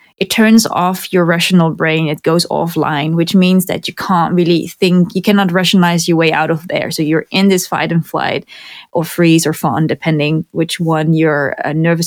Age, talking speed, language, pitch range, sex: 20-39, 200 wpm, English, 160-185 Hz, female